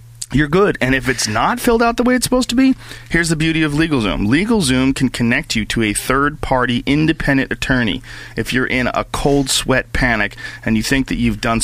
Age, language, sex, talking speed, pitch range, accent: 40-59, English, male, 210 wpm, 115-140 Hz, American